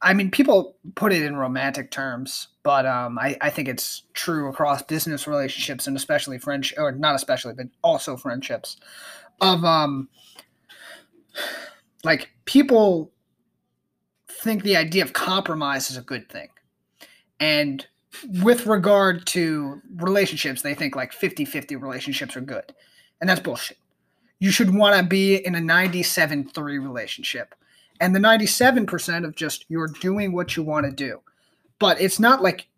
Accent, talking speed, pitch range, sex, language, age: American, 150 wpm, 140-190 Hz, male, English, 30-49